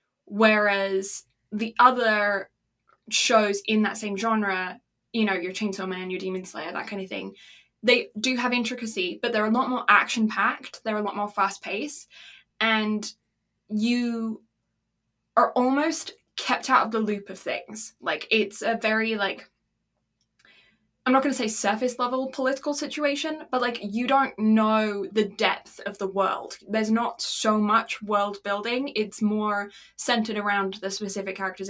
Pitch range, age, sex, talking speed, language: 195-240 Hz, 10-29, female, 155 wpm, English